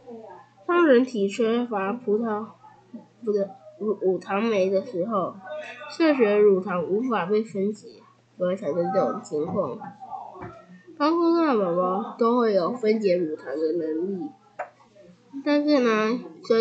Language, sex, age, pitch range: Chinese, female, 10-29, 195-260 Hz